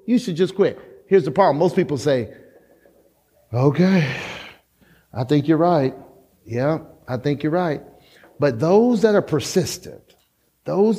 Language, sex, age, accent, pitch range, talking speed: English, male, 40-59, American, 130-190 Hz, 140 wpm